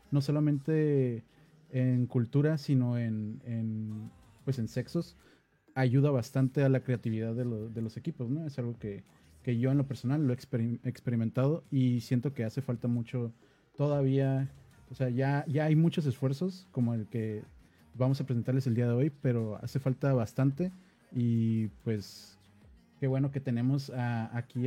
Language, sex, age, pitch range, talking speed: English, male, 30-49, 120-145 Hz, 170 wpm